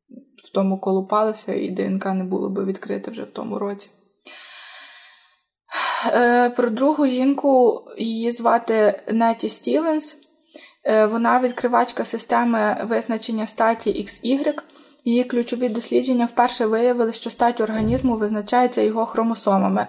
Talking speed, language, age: 120 wpm, Ukrainian, 20-39